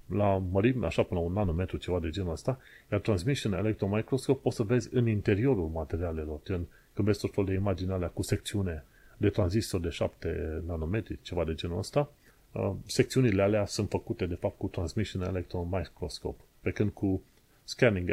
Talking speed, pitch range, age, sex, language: 175 wpm, 90-115 Hz, 30-49, male, Romanian